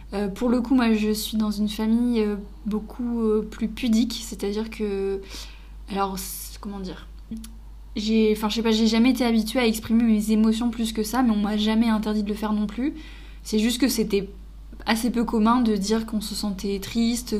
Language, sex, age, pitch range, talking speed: French, female, 20-39, 200-230 Hz, 205 wpm